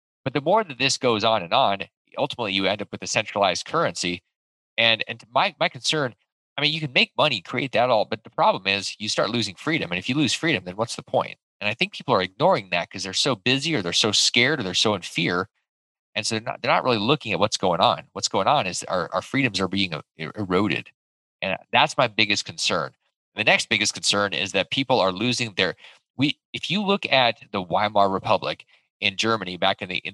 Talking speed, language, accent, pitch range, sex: 235 wpm, English, American, 100-140 Hz, male